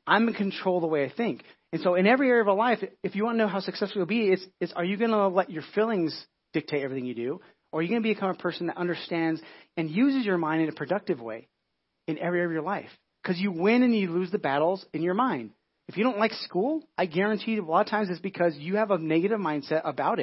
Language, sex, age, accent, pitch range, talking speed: English, male, 30-49, American, 160-205 Hz, 280 wpm